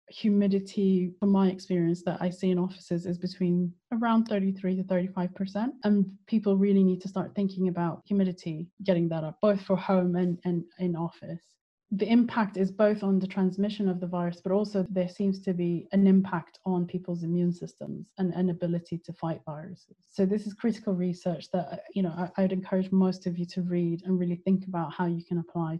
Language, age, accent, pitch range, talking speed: English, 20-39, British, 175-195 Hz, 200 wpm